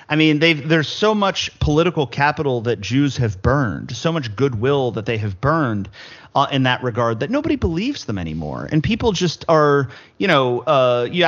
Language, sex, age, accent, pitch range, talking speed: English, male, 30-49, American, 115-160 Hz, 190 wpm